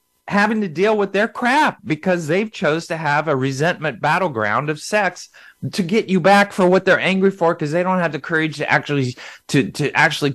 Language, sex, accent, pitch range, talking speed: English, male, American, 135-185 Hz, 195 wpm